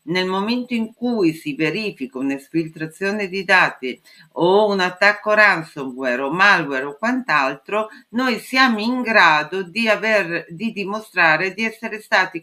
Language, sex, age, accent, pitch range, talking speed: Italian, female, 50-69, native, 160-210 Hz, 135 wpm